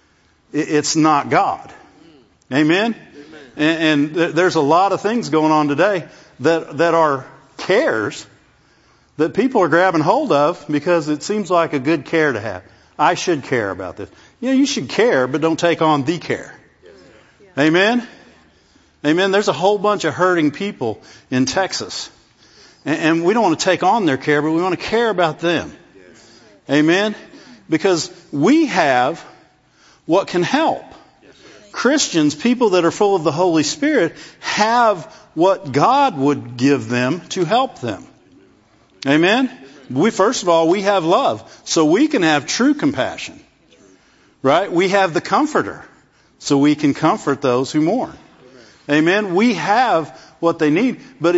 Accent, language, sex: American, English, male